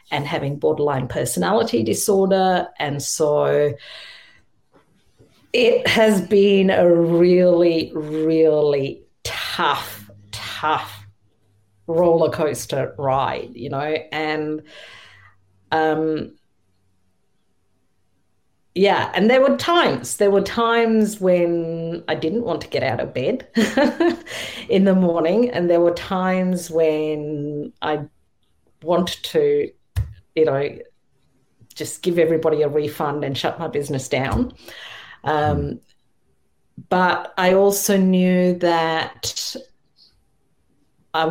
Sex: female